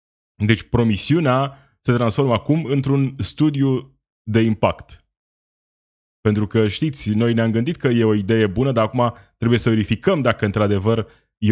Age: 20-39